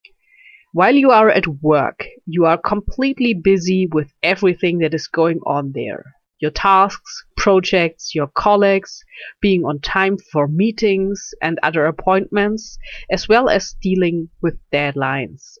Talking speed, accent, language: 135 wpm, German, English